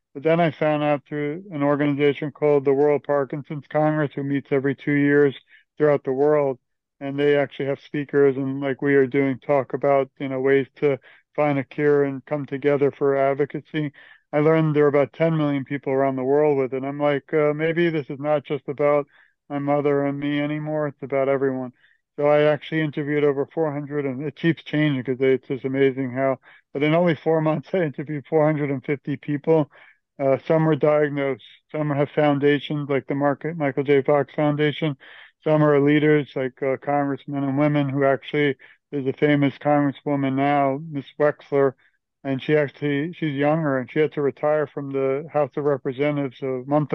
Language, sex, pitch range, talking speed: English, male, 140-150 Hz, 190 wpm